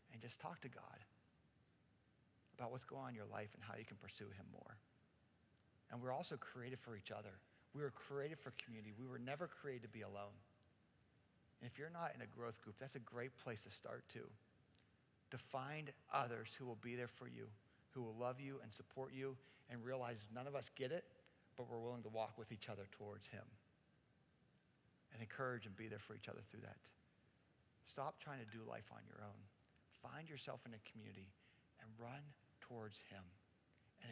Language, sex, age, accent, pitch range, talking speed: English, male, 50-69, American, 105-135 Hz, 200 wpm